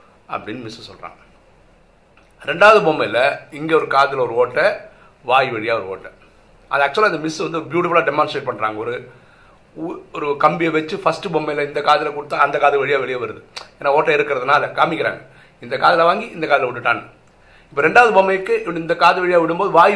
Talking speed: 155 wpm